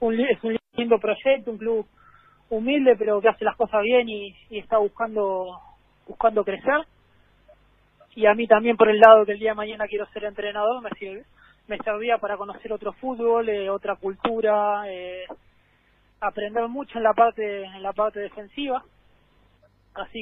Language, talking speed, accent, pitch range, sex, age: Spanish, 170 wpm, Argentinian, 195-225 Hz, male, 20-39